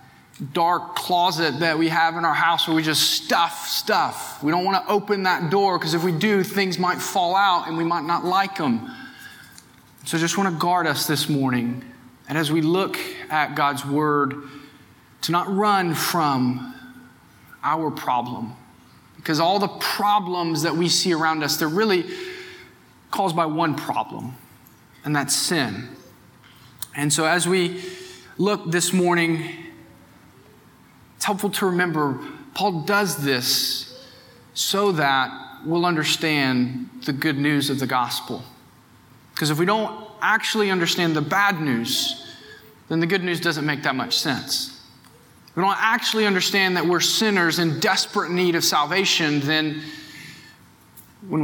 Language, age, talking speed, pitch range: English, 20-39, 155 wpm, 145-190 Hz